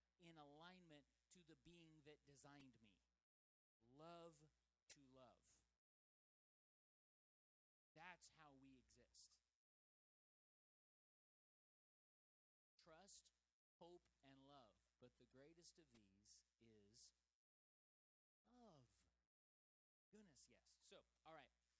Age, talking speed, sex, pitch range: 30-49, 85 wpm, male, 125-170 Hz